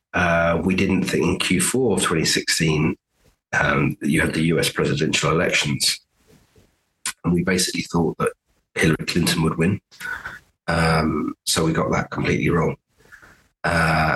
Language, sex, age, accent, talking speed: English, male, 30-49, British, 140 wpm